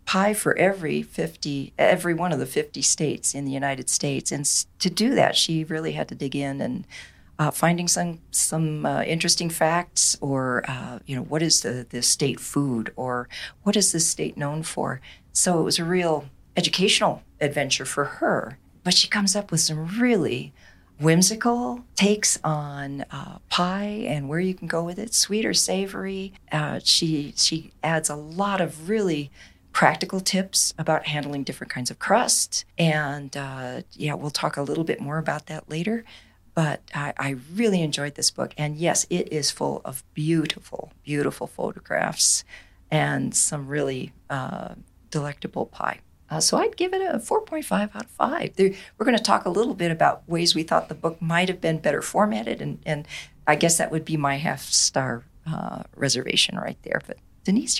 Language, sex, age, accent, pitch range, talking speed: English, female, 40-59, American, 145-190 Hz, 180 wpm